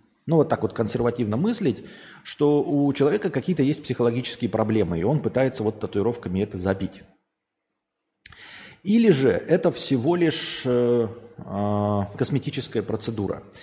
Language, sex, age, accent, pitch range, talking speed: Russian, male, 30-49, native, 105-145 Hz, 120 wpm